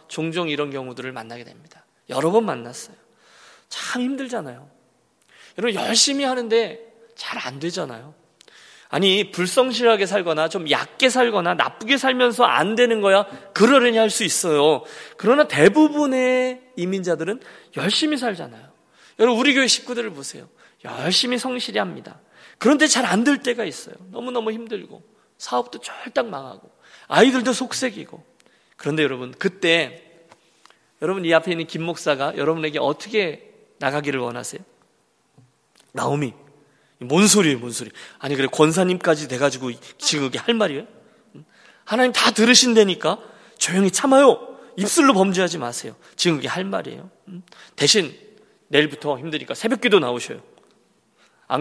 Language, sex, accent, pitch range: Korean, male, native, 155-235 Hz